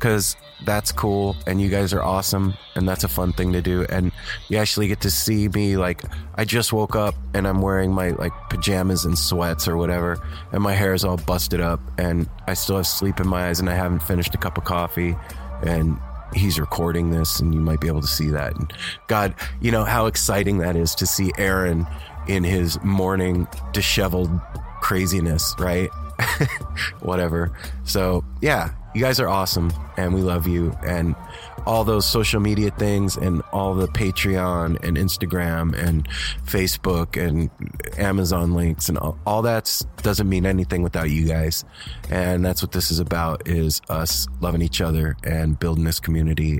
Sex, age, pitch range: male, 20-39, 80-100 Hz